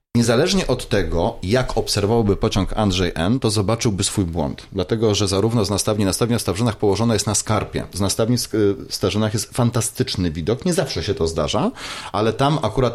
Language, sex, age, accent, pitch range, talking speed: Polish, male, 30-49, native, 95-120 Hz, 180 wpm